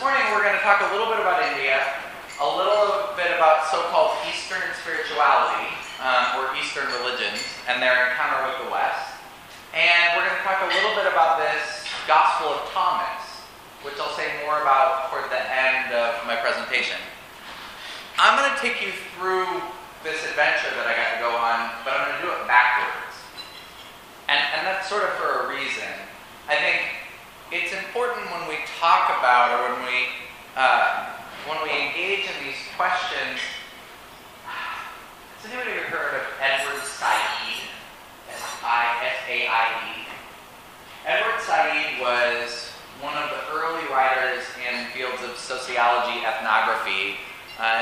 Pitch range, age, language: 125-175 Hz, 30-49, English